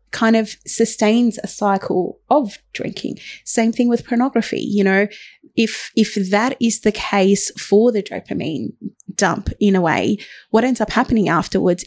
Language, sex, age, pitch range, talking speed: English, female, 30-49, 195-230 Hz, 155 wpm